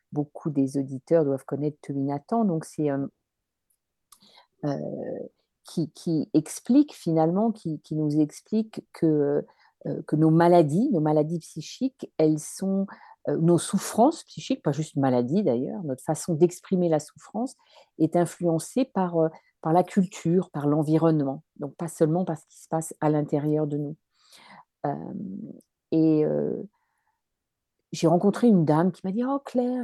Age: 50-69